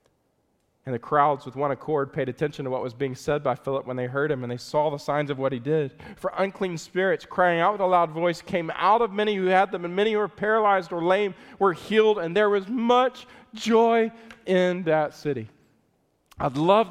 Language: English